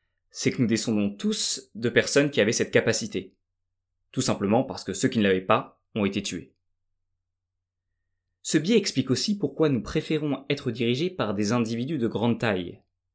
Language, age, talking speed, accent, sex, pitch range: French, 20-39, 175 wpm, French, male, 90-125 Hz